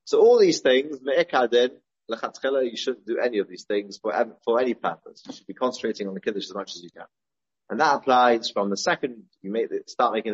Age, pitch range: 30-49, 100-145 Hz